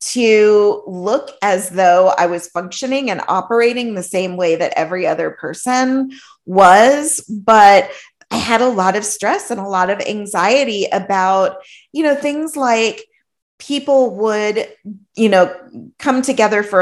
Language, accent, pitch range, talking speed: English, American, 190-250 Hz, 145 wpm